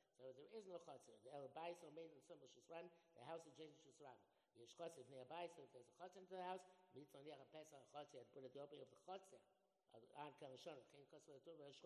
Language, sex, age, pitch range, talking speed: English, male, 60-79, 145-180 Hz, 130 wpm